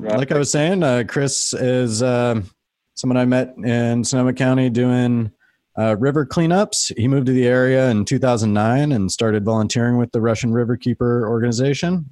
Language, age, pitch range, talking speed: English, 30-49, 95-120 Hz, 165 wpm